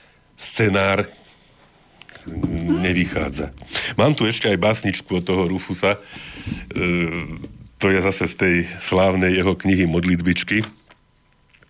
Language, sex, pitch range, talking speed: Slovak, male, 85-95 Hz, 105 wpm